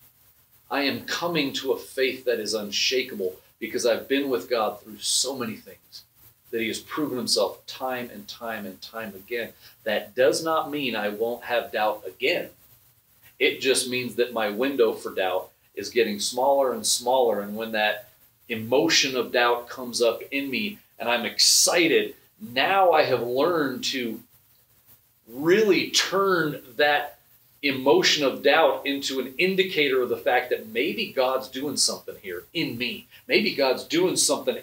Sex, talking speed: male, 160 wpm